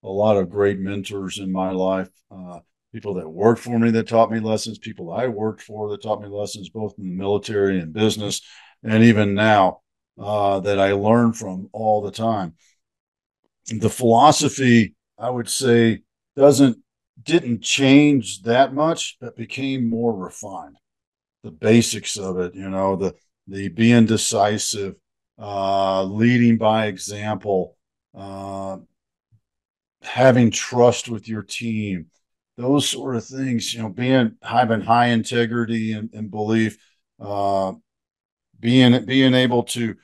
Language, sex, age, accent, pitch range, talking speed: English, male, 50-69, American, 100-120 Hz, 140 wpm